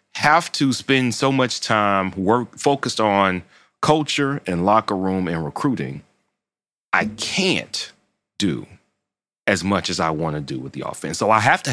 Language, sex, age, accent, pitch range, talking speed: English, male, 30-49, American, 100-145 Hz, 165 wpm